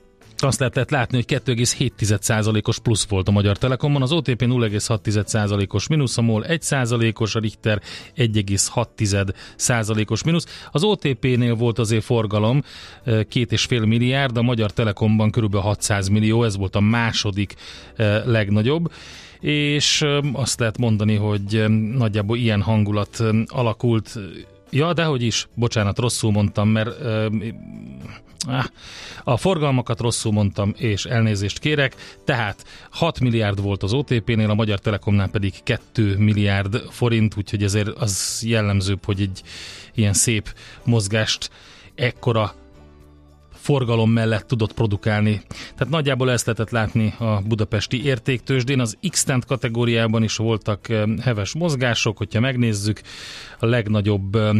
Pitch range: 105-125 Hz